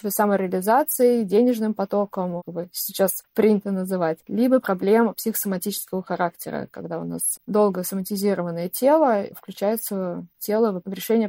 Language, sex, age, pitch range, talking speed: Russian, female, 20-39, 190-225 Hz, 115 wpm